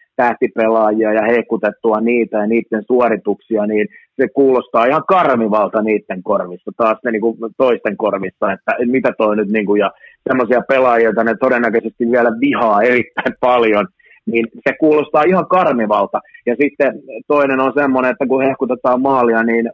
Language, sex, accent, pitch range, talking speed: Finnish, male, native, 110-125 Hz, 150 wpm